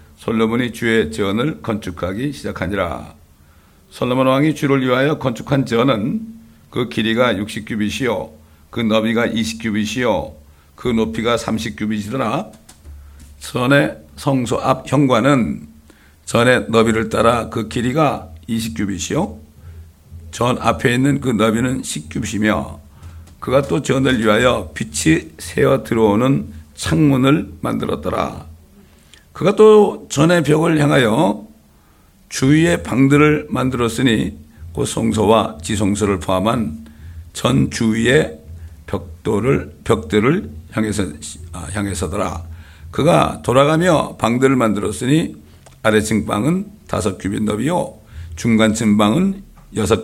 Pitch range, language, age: 80-125 Hz, Korean, 60-79